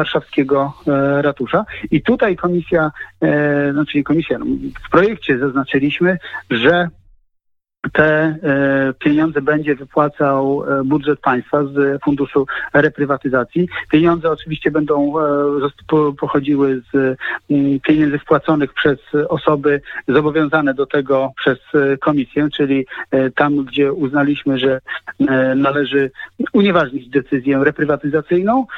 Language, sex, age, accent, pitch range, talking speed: Polish, male, 40-59, native, 140-165 Hz, 90 wpm